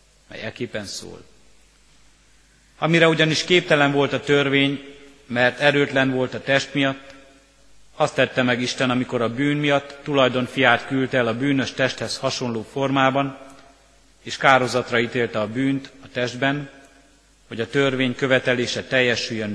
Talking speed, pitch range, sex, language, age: 130 wpm, 115-135 Hz, male, Hungarian, 50-69